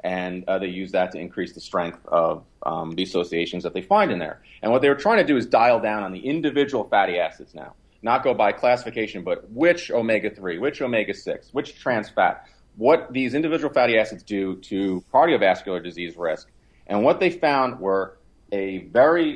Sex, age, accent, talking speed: male, 40-59, American, 195 wpm